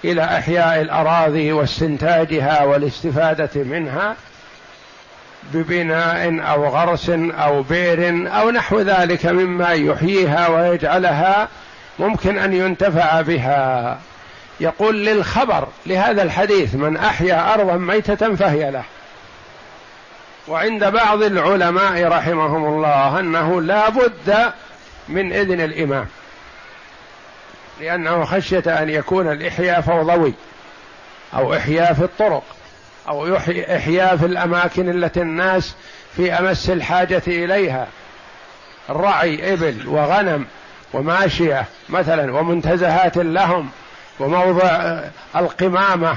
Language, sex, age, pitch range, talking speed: Arabic, male, 60-79, 160-190 Hz, 95 wpm